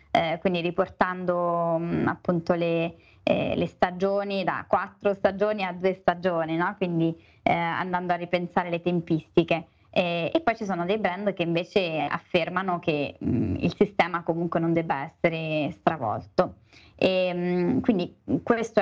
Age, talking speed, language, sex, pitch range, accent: 20-39, 145 wpm, Italian, female, 170-200 Hz, native